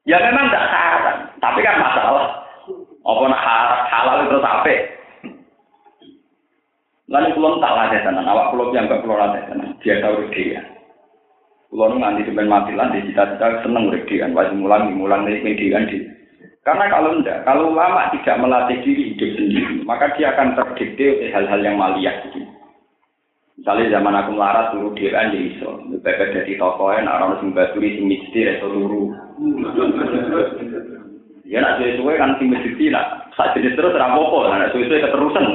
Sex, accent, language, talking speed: male, native, Indonesian, 125 wpm